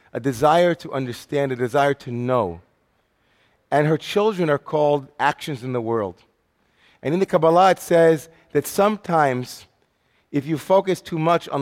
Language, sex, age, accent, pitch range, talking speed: English, male, 40-59, American, 125-155 Hz, 160 wpm